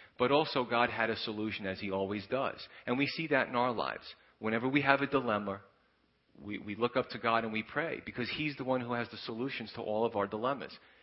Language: English